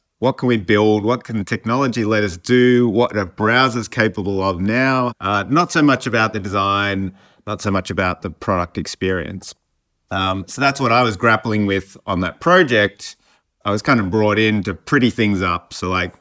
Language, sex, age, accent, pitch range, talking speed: English, male, 30-49, Australian, 90-110 Hz, 200 wpm